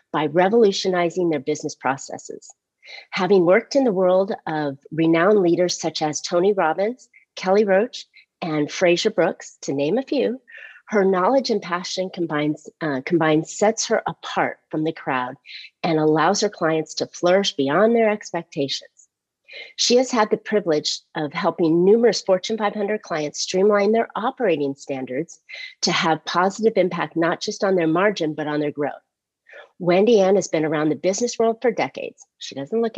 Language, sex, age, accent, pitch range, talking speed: English, female, 40-59, American, 155-210 Hz, 160 wpm